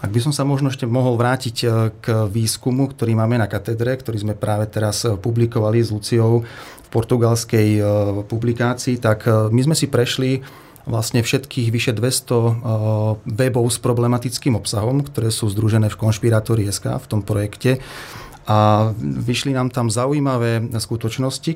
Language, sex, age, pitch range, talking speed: Slovak, male, 30-49, 110-125 Hz, 145 wpm